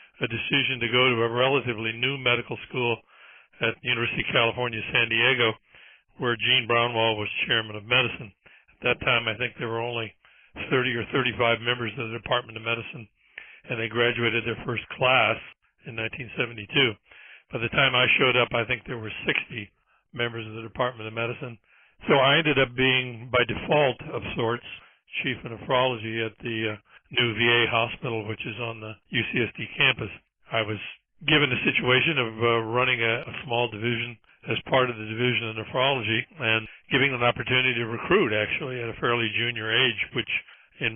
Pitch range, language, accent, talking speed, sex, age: 110-125 Hz, English, American, 180 wpm, male, 60-79